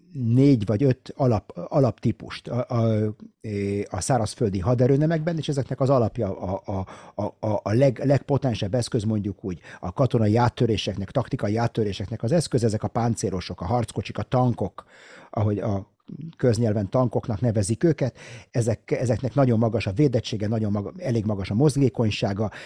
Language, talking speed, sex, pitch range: Hungarian, 125 wpm, male, 110-130 Hz